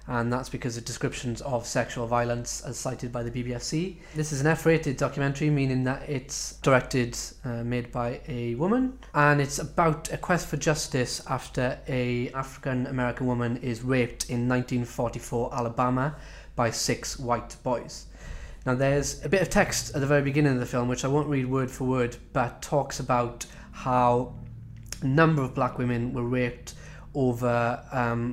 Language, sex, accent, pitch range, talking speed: English, male, British, 120-140 Hz, 170 wpm